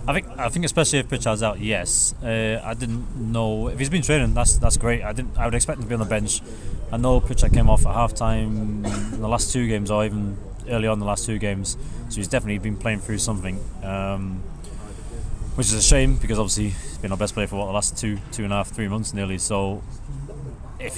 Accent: British